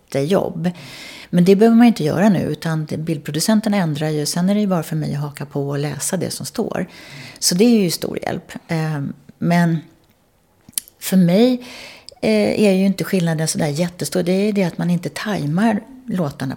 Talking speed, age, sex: 180 wpm, 40-59, female